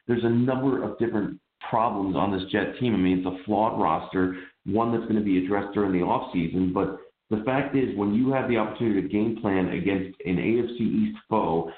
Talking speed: 215 wpm